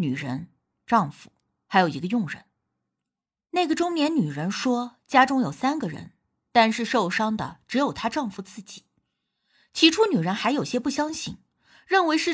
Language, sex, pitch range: Chinese, female, 190-300 Hz